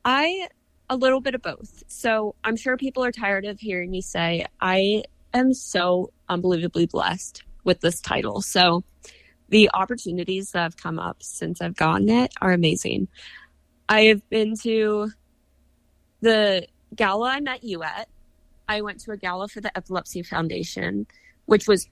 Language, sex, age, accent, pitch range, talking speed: English, female, 20-39, American, 180-220 Hz, 160 wpm